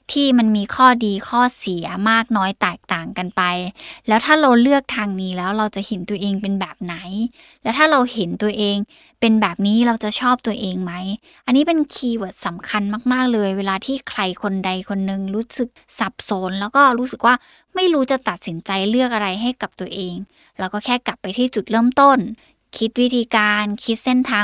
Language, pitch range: Thai, 195-245 Hz